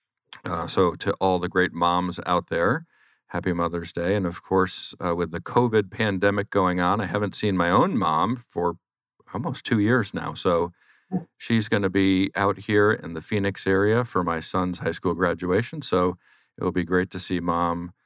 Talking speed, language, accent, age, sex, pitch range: 190 wpm, English, American, 50-69, male, 90-105 Hz